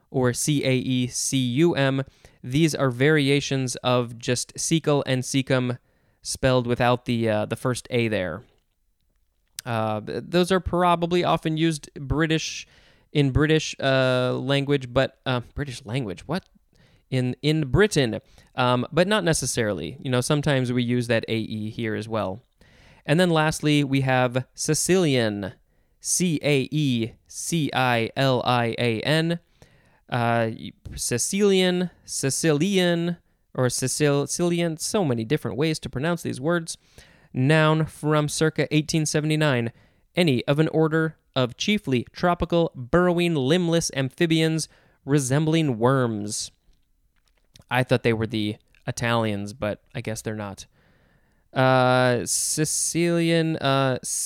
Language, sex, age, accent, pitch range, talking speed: English, male, 20-39, American, 125-155 Hz, 130 wpm